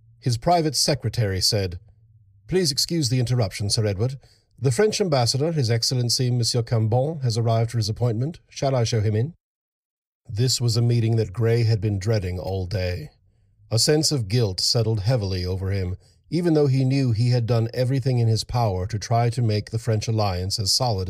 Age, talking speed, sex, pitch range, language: 50-69, 190 wpm, male, 105-130 Hz, English